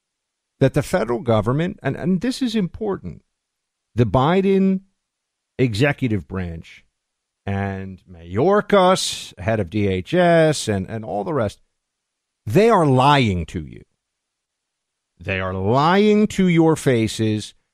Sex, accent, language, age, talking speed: male, American, English, 50-69, 115 wpm